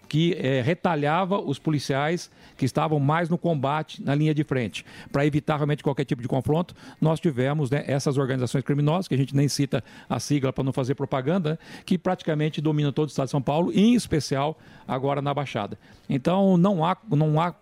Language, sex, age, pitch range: Portuguese, male, 50-69, 135-170 Hz